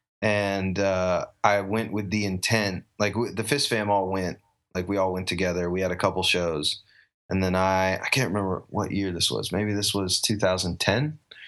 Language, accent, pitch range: English, American, 90-105 Hz